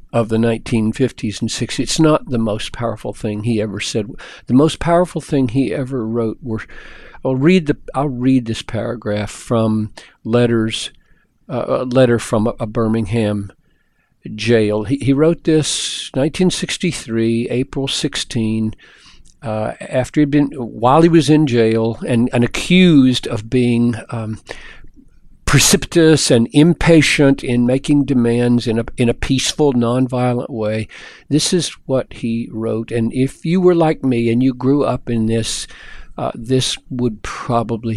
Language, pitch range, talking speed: English, 115-135 Hz, 145 wpm